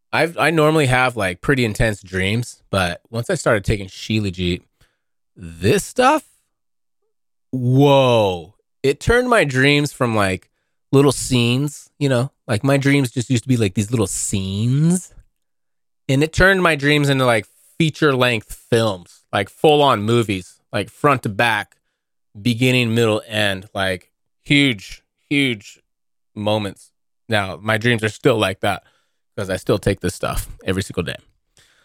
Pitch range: 100-135 Hz